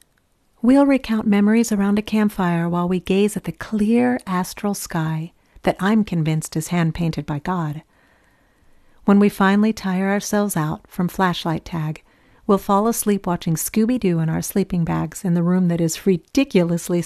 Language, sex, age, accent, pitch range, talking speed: English, female, 50-69, American, 170-205 Hz, 160 wpm